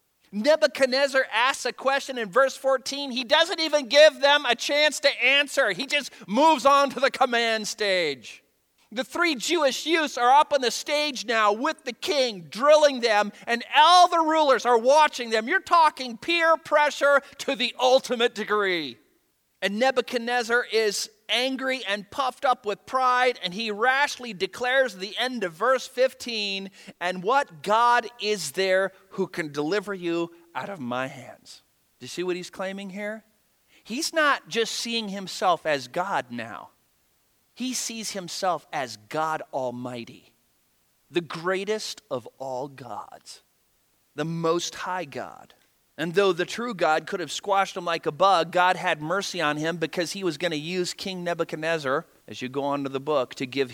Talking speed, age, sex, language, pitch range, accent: 165 wpm, 40-59, male, English, 170-255 Hz, American